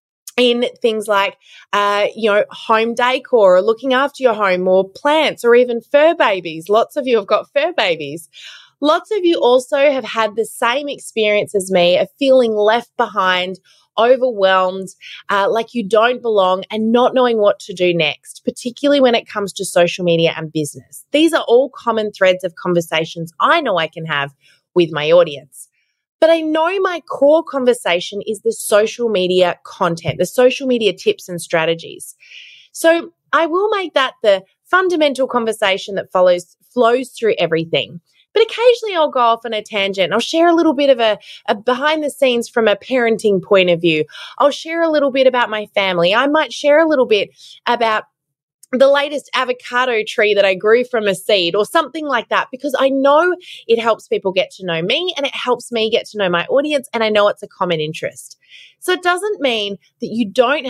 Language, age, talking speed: English, 20-39, 195 wpm